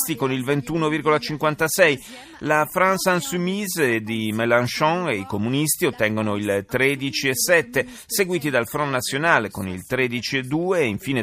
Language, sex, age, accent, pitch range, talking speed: Italian, male, 30-49, native, 115-165 Hz, 125 wpm